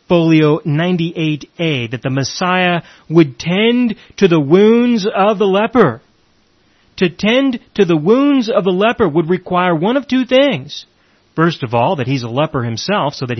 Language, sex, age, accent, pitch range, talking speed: English, male, 40-59, American, 135-180 Hz, 165 wpm